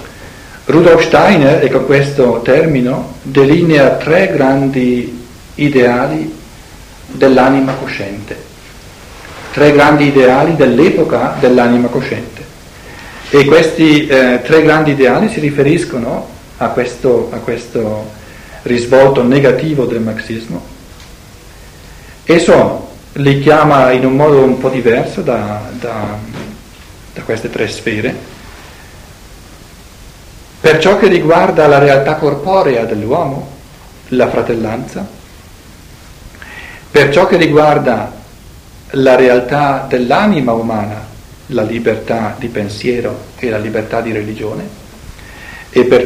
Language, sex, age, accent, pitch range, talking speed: Italian, male, 50-69, native, 110-140 Hz, 105 wpm